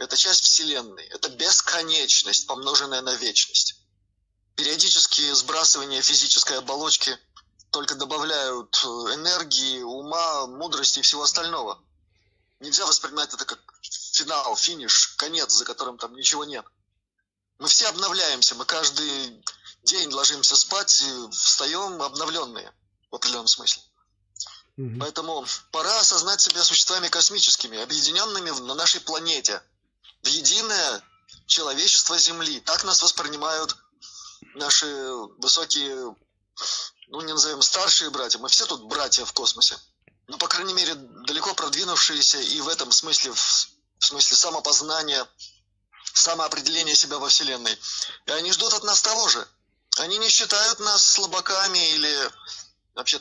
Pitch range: 130-185 Hz